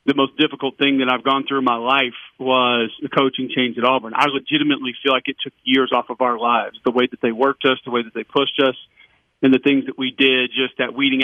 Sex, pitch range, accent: male, 130-150 Hz, American